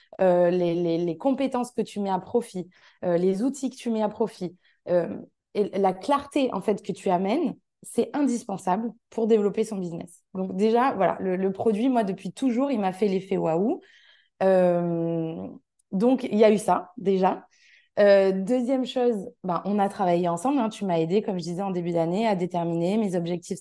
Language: French